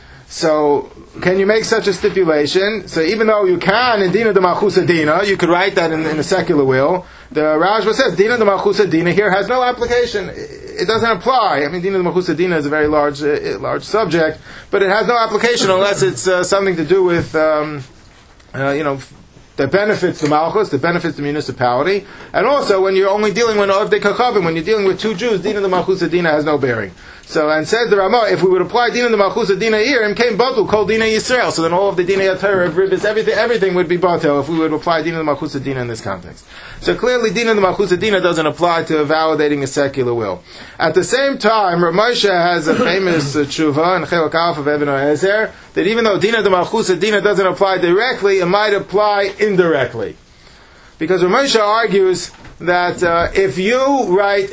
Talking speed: 205 wpm